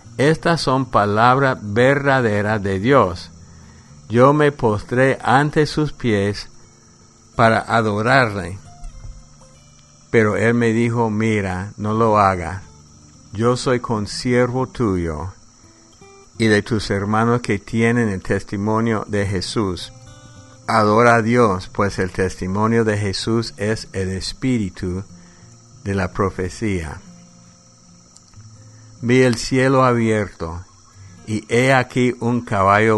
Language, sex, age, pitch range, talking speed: English, male, 50-69, 100-120 Hz, 105 wpm